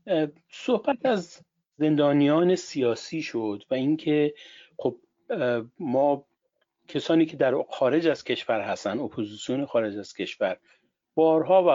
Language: Persian